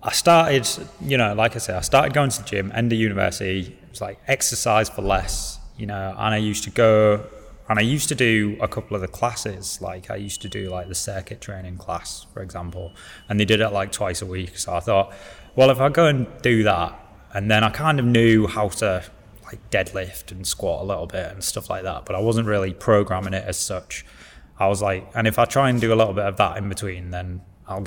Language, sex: English, male